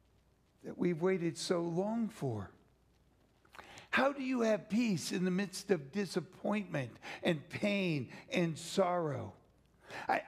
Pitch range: 155-200 Hz